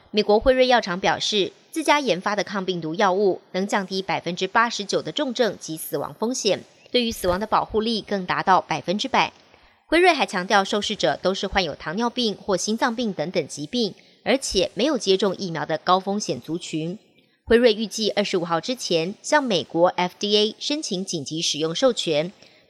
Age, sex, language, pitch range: 30-49, male, Chinese, 175-240 Hz